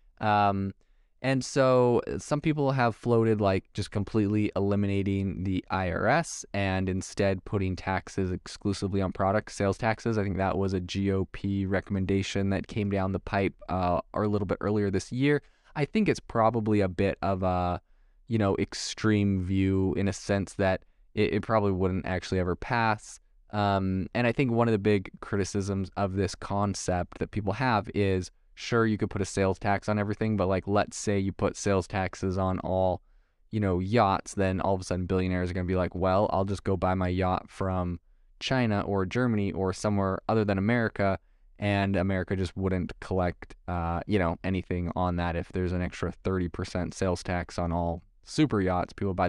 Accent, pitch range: American, 95-105 Hz